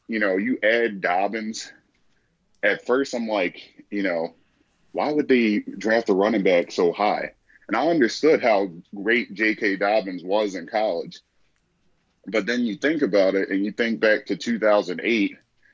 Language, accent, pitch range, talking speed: English, American, 95-110 Hz, 160 wpm